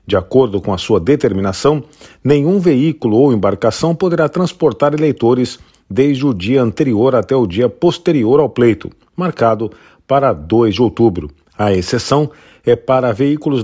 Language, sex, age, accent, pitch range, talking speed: Portuguese, male, 40-59, Brazilian, 105-145 Hz, 145 wpm